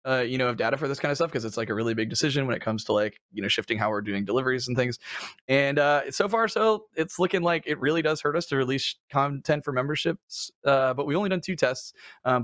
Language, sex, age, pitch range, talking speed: English, male, 20-39, 120-160 Hz, 275 wpm